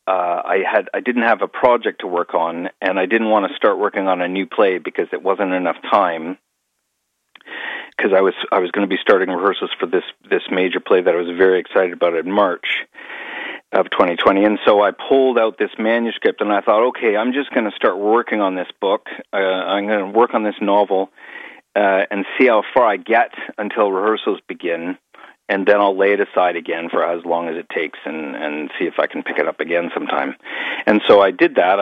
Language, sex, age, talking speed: English, male, 40-59, 225 wpm